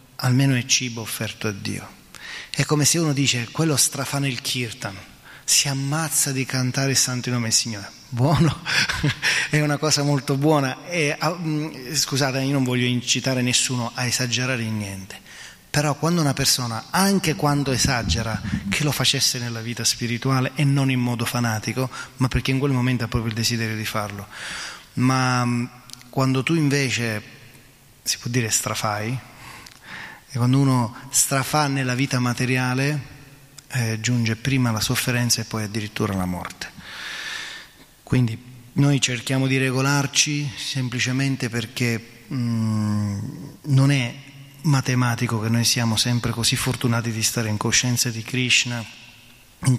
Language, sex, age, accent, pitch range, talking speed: Italian, male, 20-39, native, 115-135 Hz, 145 wpm